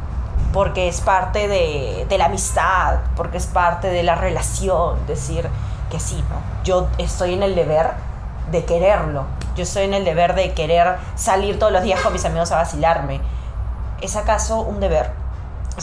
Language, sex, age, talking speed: Spanish, female, 20-39, 170 wpm